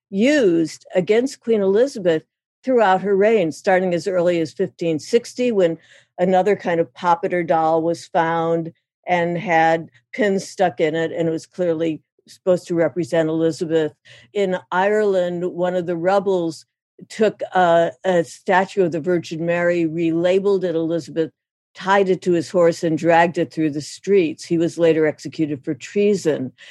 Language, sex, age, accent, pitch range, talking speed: English, female, 60-79, American, 165-195 Hz, 155 wpm